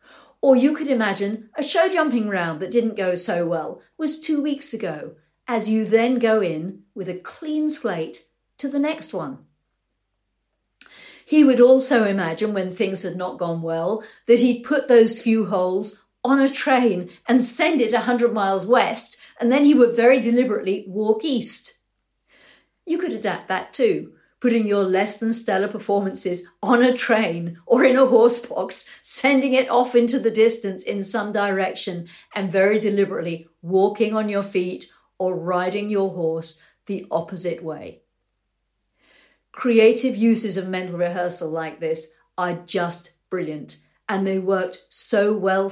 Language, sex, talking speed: English, female, 155 wpm